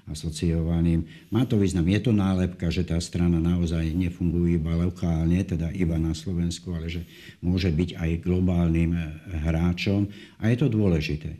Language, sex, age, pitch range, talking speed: Slovak, male, 60-79, 80-90 Hz, 155 wpm